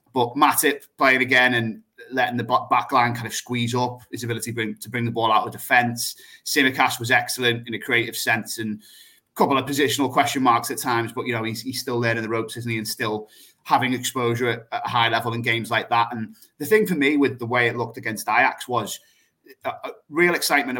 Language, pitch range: English, 115-140 Hz